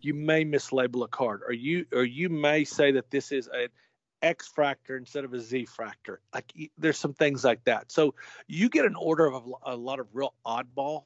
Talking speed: 200 wpm